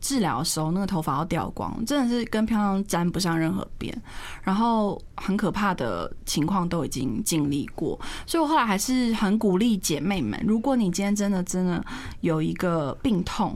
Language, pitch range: Chinese, 180-270 Hz